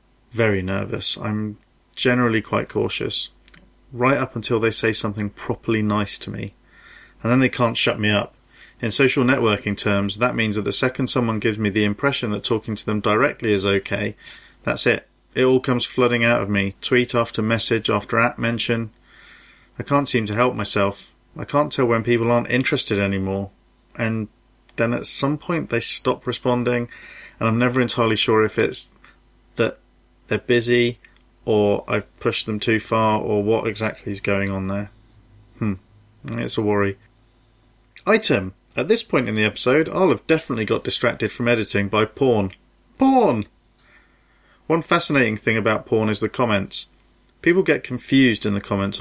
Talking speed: 170 wpm